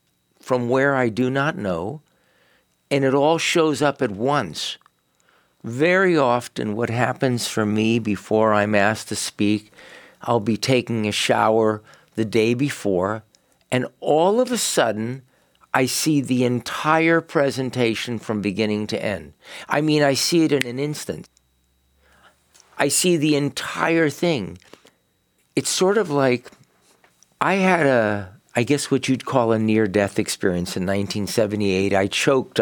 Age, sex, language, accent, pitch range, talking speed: 60-79, male, English, American, 105-140 Hz, 145 wpm